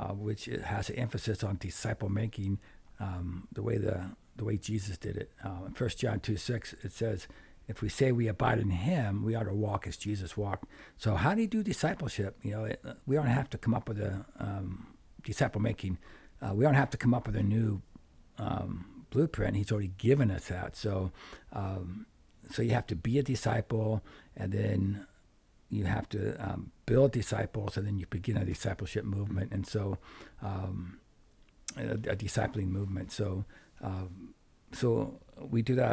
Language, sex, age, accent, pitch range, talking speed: English, male, 60-79, American, 100-115 Hz, 185 wpm